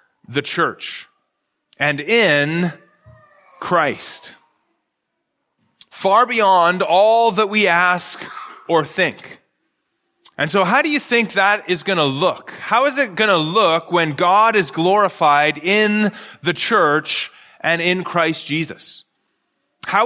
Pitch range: 170-215 Hz